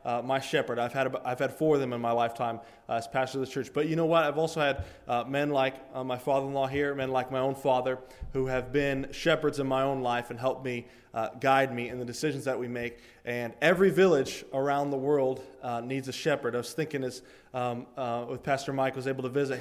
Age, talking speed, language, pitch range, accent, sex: 20-39, 250 wpm, English, 130-150 Hz, American, male